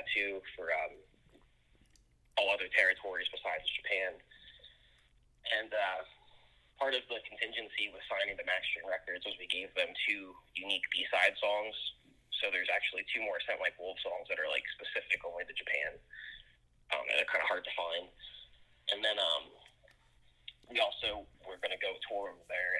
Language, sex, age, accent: English, male, 20-39, American